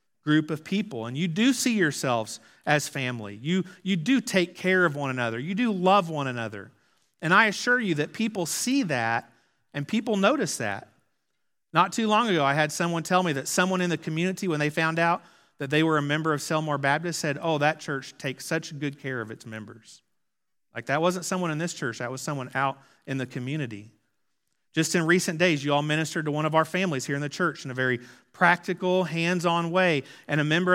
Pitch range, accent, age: 130-180 Hz, American, 40-59